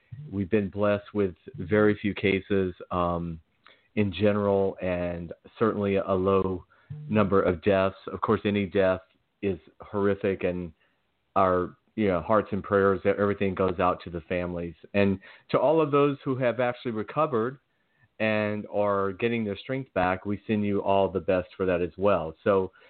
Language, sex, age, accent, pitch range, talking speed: English, male, 40-59, American, 95-120 Hz, 165 wpm